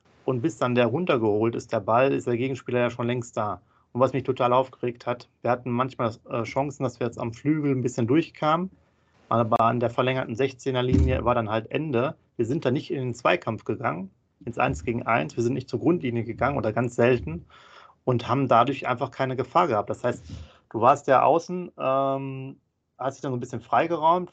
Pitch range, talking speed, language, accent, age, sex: 120-140 Hz, 210 wpm, German, German, 30-49, male